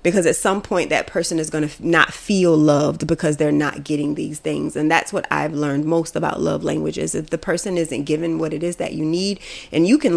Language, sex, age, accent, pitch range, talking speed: English, female, 30-49, American, 160-200 Hz, 240 wpm